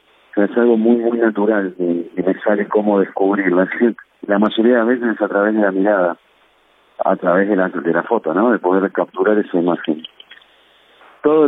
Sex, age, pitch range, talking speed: male, 50-69, 110-140 Hz, 195 wpm